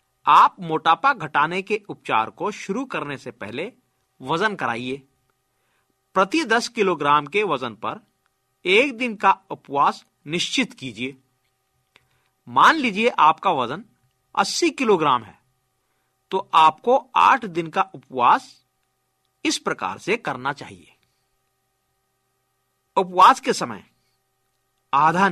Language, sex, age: Hindi, male, 50-69